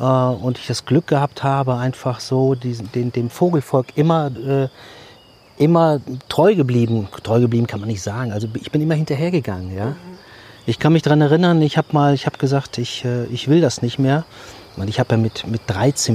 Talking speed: 195 wpm